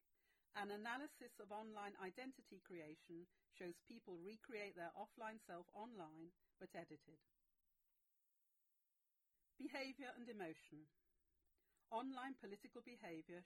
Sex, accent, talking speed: female, British, 95 wpm